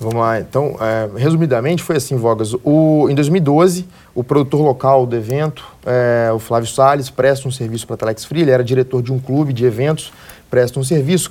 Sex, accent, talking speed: male, Brazilian, 195 wpm